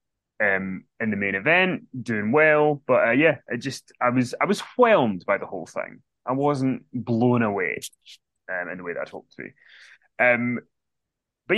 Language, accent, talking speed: English, British, 185 wpm